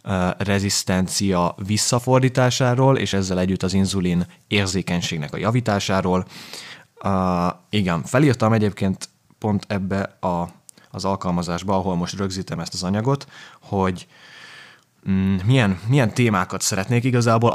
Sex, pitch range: male, 95-120 Hz